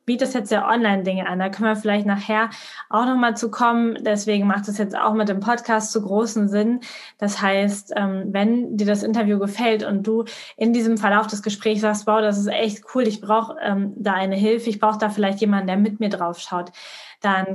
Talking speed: 210 wpm